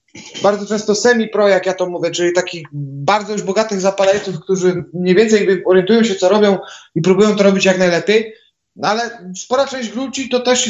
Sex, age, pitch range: male, 30-49, 185-225 Hz